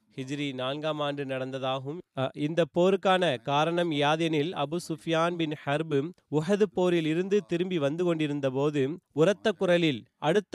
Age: 30-49